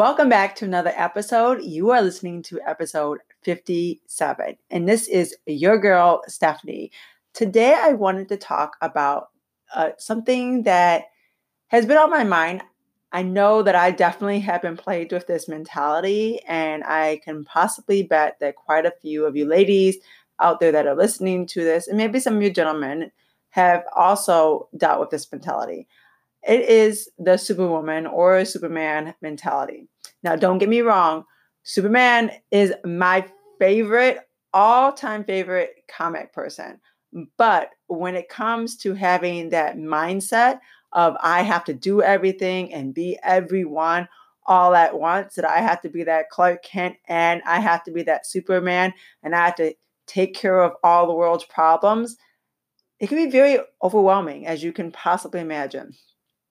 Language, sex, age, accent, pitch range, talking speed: English, female, 30-49, American, 165-205 Hz, 160 wpm